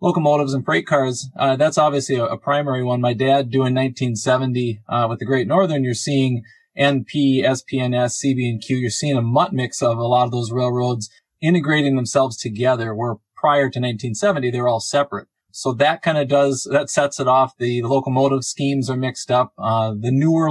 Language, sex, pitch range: English, male, 120-140 Hz